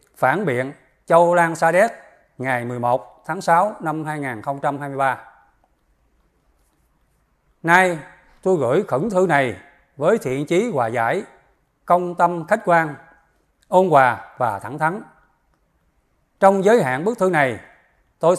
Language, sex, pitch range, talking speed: Vietnamese, male, 135-185 Hz, 125 wpm